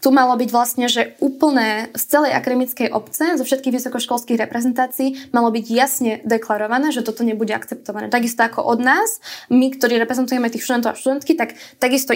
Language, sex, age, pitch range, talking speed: Slovak, female, 20-39, 220-260 Hz, 175 wpm